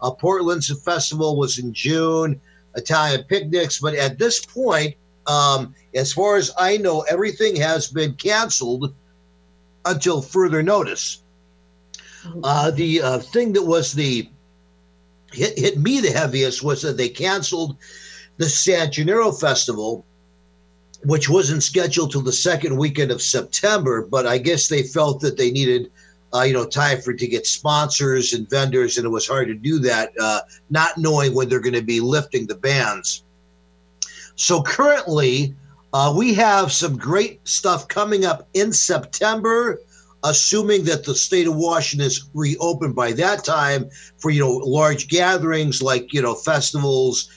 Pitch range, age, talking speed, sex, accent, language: 125-165 Hz, 50-69, 155 wpm, male, American, English